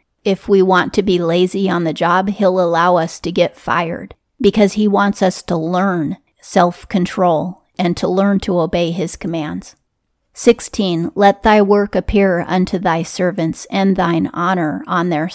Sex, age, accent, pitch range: female, 30-49, American, 175-200 Hz